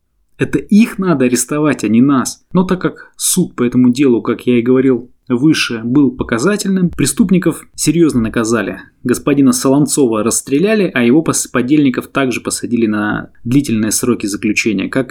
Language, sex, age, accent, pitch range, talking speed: Russian, male, 20-39, native, 125-175 Hz, 145 wpm